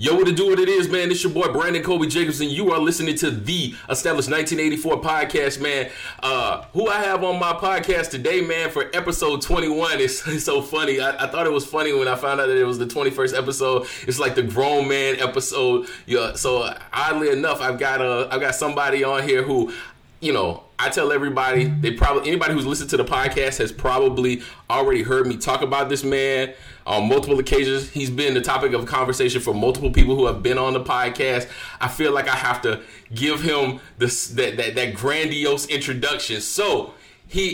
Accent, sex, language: American, male, English